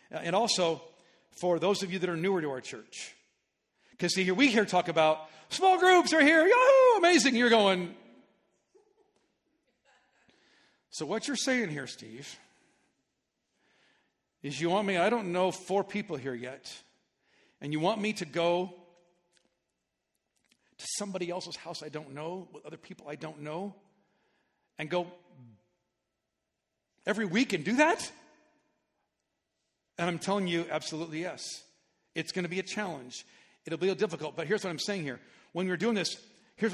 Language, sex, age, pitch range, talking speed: English, male, 50-69, 160-210 Hz, 160 wpm